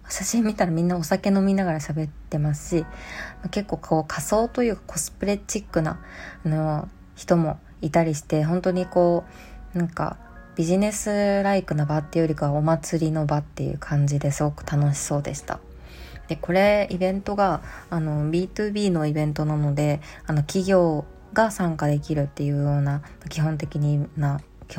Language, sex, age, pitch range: Japanese, female, 20-39, 150-175 Hz